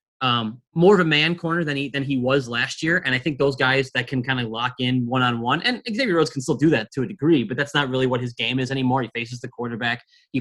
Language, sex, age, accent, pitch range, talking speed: English, male, 20-39, American, 125-155 Hz, 295 wpm